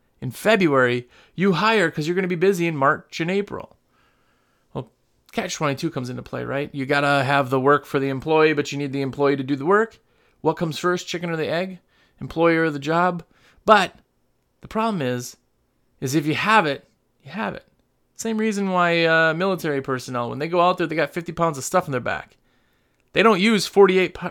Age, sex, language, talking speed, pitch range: 30-49, male, English, 210 wpm, 140-180 Hz